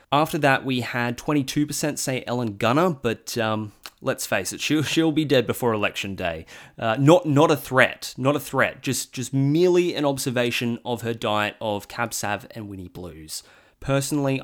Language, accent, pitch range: English, Australian, 105-140 Hz